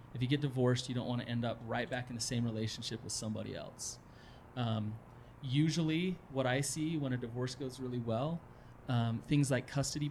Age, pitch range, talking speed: 30-49, 120-140 Hz, 200 wpm